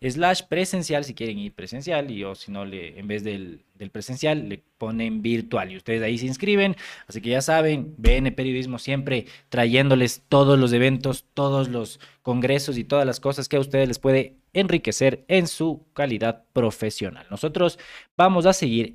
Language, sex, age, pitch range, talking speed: Spanish, male, 20-39, 115-170 Hz, 175 wpm